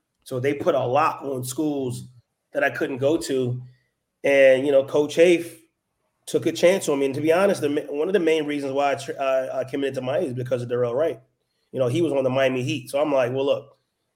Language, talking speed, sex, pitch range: English, 235 wpm, male, 125-155 Hz